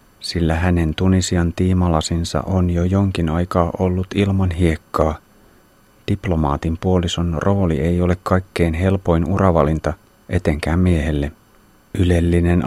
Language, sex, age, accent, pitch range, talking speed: Finnish, male, 30-49, native, 80-95 Hz, 105 wpm